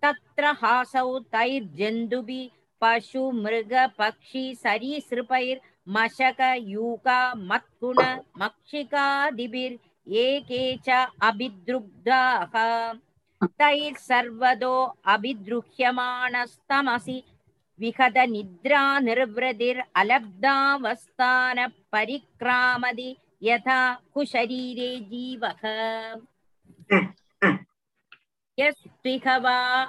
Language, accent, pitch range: Tamil, native, 230-260 Hz